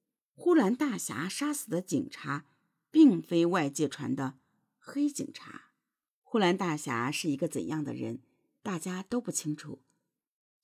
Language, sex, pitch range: Chinese, female, 150-210 Hz